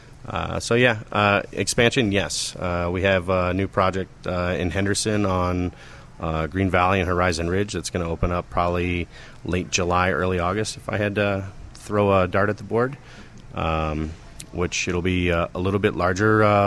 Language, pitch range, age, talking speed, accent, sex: English, 85-100 Hz, 30-49, 185 wpm, American, male